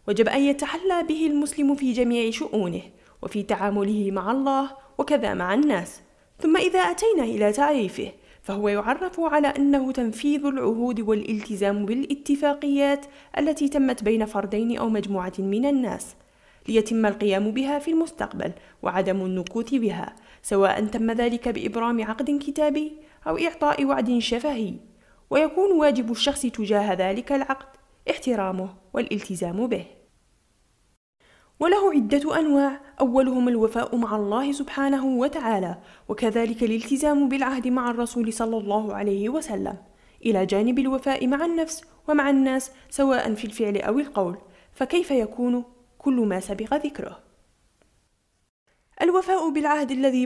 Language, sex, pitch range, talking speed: Arabic, female, 215-290 Hz, 120 wpm